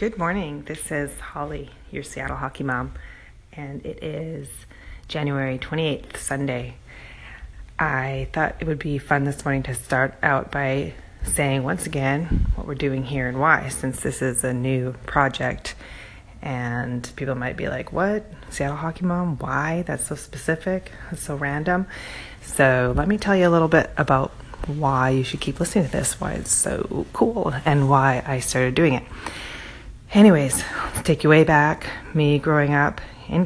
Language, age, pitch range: English, 30-49, 130-155 Hz